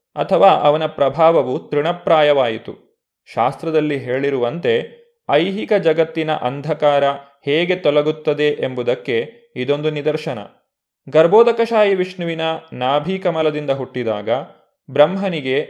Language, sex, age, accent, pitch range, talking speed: Kannada, male, 20-39, native, 145-185 Hz, 75 wpm